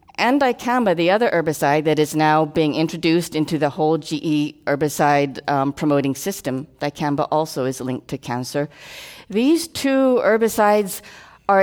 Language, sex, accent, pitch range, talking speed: English, female, American, 155-205 Hz, 140 wpm